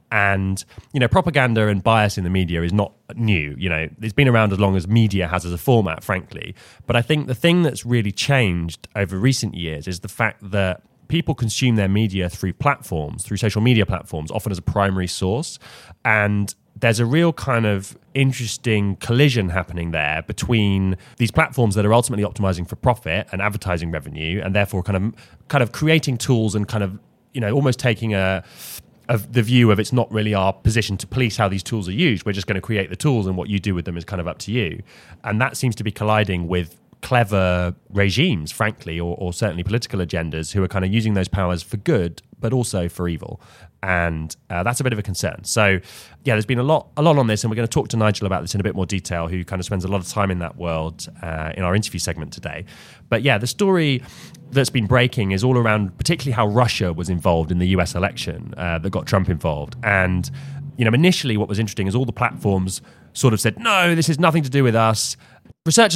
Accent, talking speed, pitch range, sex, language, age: British, 235 wpm, 95-120 Hz, male, English, 20-39